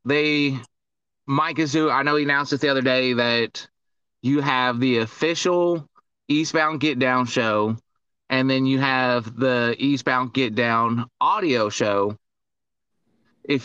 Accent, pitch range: American, 120-145 Hz